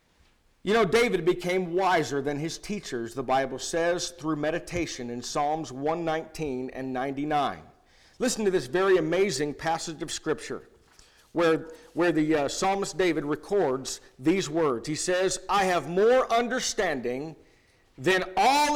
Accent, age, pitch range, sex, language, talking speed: American, 50-69, 145-210 Hz, male, English, 140 wpm